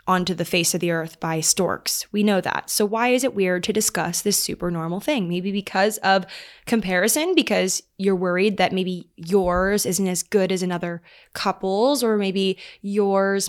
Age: 20-39